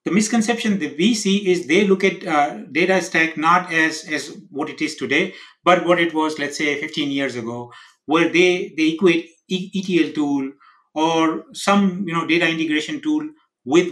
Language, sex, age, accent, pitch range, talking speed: English, male, 60-79, Indian, 150-195 Hz, 180 wpm